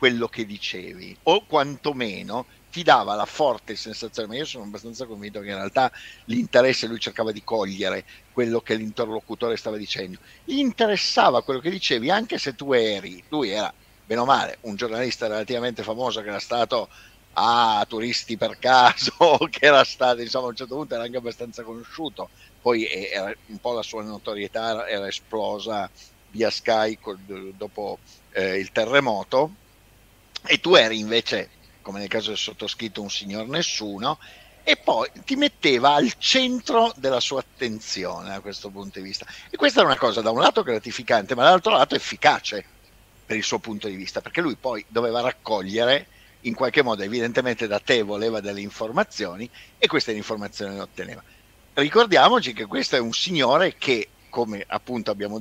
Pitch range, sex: 105-125 Hz, male